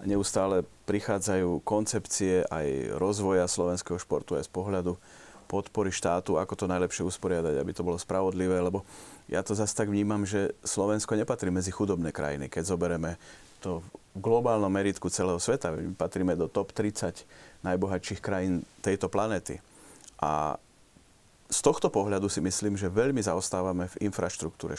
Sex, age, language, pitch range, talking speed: male, 30-49, Slovak, 90-105 Hz, 145 wpm